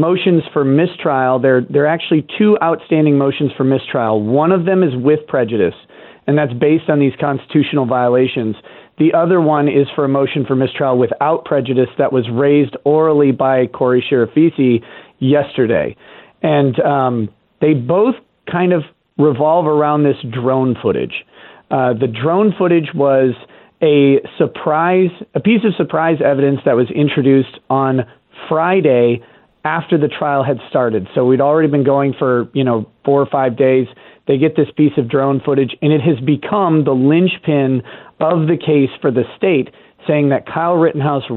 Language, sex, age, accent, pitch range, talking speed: English, male, 40-59, American, 130-155 Hz, 160 wpm